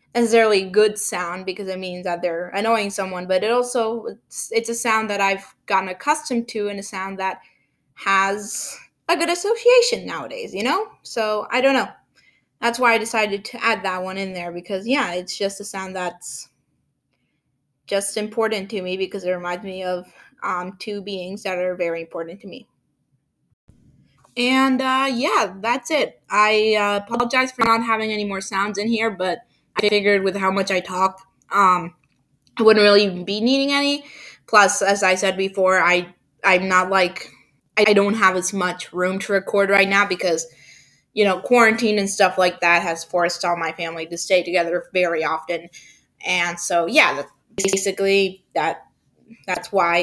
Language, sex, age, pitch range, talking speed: English, female, 20-39, 180-225 Hz, 180 wpm